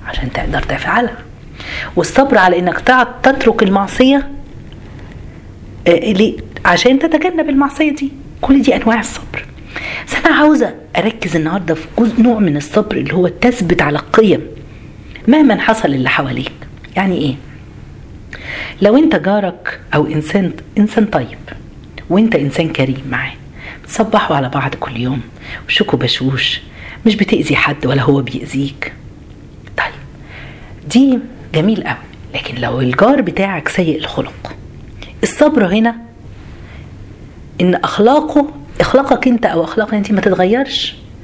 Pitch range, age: 145-230 Hz, 40-59